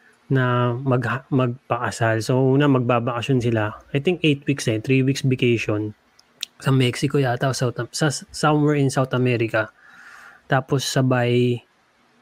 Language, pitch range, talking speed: Filipino, 115-135 Hz, 125 wpm